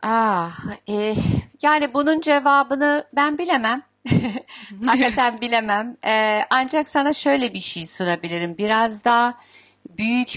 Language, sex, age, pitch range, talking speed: Turkish, female, 60-79, 195-260 Hz, 110 wpm